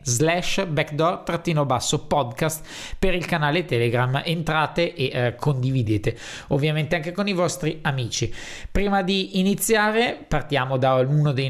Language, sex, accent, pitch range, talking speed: Italian, male, native, 130-160 Hz, 135 wpm